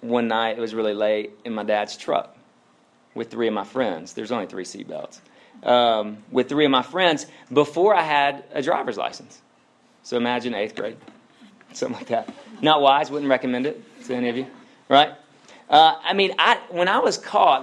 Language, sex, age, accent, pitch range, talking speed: English, male, 30-49, American, 110-145 Hz, 190 wpm